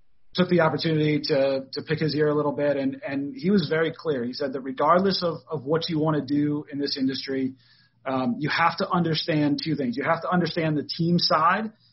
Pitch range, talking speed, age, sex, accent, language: 135-160 Hz, 225 wpm, 30-49, male, American, English